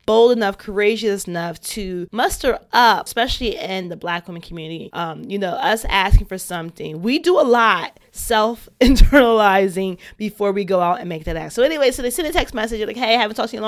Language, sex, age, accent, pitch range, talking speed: English, female, 20-39, American, 190-235 Hz, 220 wpm